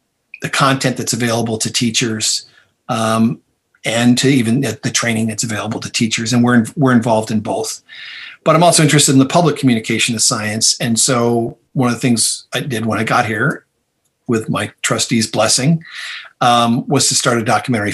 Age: 40-59